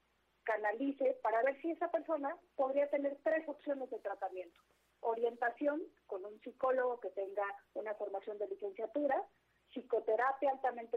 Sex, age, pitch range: female, 40-59, 210-275 Hz